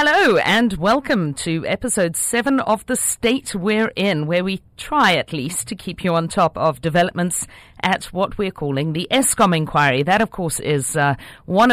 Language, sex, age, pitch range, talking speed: English, female, 50-69, 155-220 Hz, 185 wpm